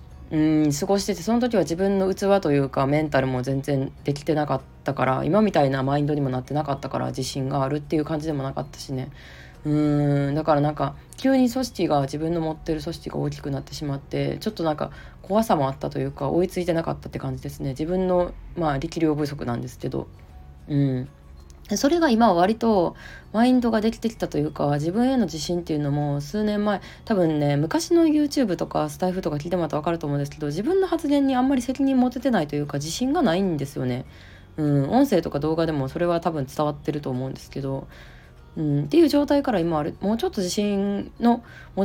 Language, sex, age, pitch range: Japanese, female, 20-39, 135-200 Hz